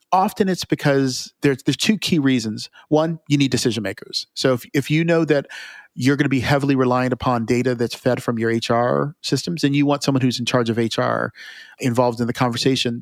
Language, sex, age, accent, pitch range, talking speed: English, male, 40-59, American, 120-140 Hz, 210 wpm